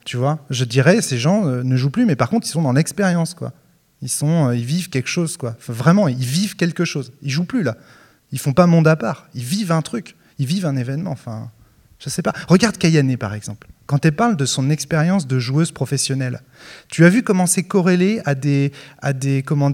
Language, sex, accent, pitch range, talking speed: French, male, French, 135-175 Hz, 230 wpm